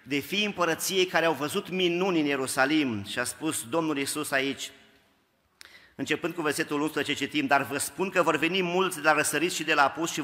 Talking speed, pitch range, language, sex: 210 wpm, 145-170 Hz, Romanian, male